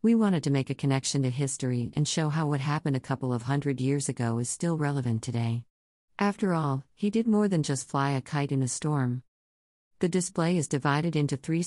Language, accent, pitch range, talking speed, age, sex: English, American, 130-155 Hz, 215 wpm, 50-69, female